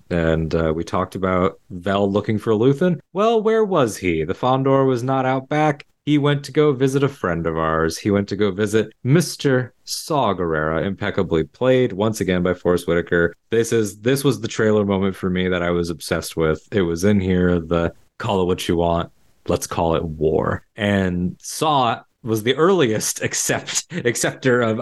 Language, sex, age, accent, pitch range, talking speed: English, male, 20-39, American, 95-120 Hz, 190 wpm